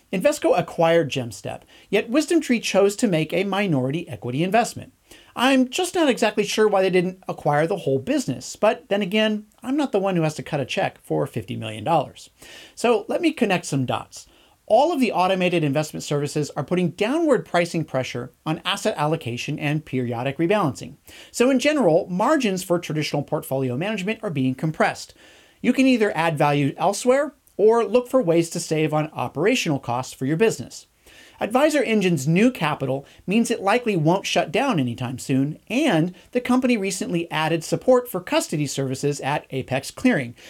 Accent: American